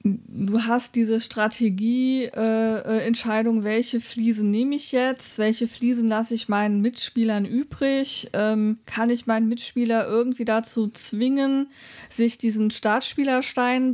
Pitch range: 205-235 Hz